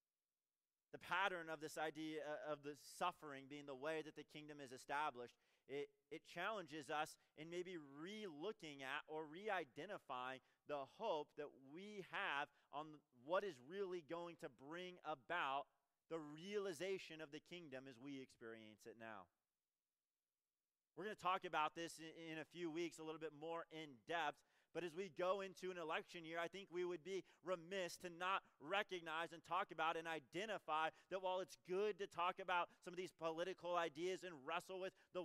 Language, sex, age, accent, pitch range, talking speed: English, male, 30-49, American, 155-195 Hz, 175 wpm